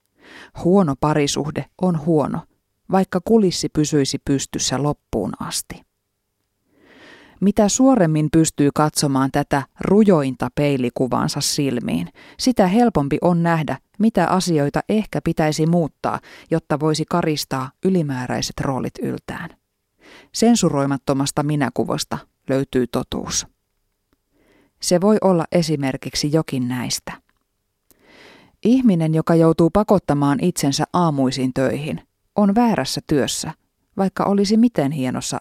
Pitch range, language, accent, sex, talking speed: 135-185 Hz, Finnish, native, female, 95 wpm